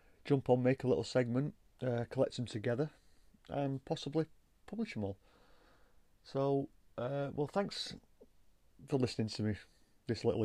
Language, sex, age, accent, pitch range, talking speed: English, male, 30-49, British, 105-130 Hz, 145 wpm